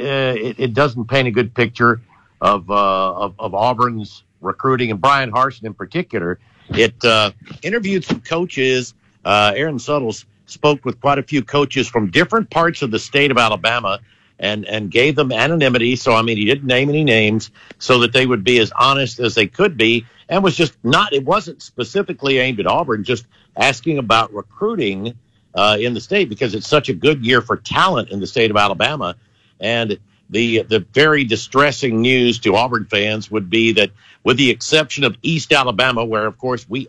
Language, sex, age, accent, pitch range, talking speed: English, male, 60-79, American, 110-140 Hz, 190 wpm